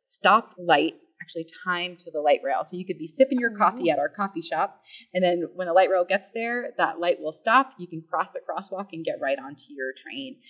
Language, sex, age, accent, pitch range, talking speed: English, female, 20-39, American, 155-235 Hz, 240 wpm